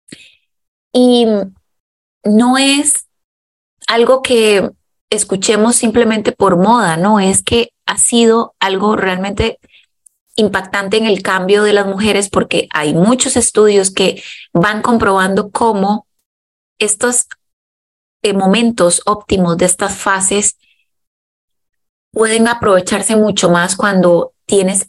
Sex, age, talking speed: female, 20-39, 105 wpm